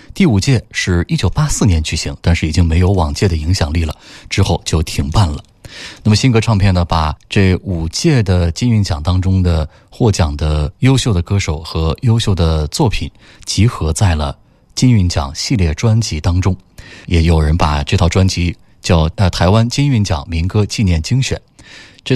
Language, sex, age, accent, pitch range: Chinese, male, 20-39, native, 85-120 Hz